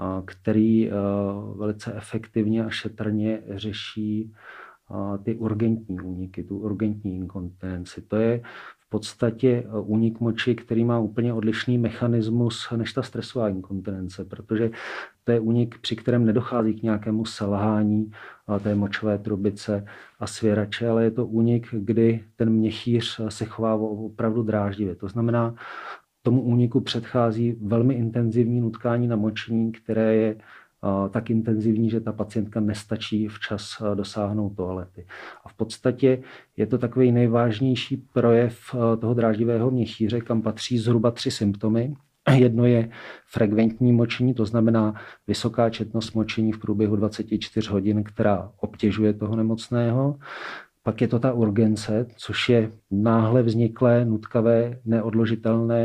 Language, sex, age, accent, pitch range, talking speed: Czech, male, 40-59, native, 105-115 Hz, 125 wpm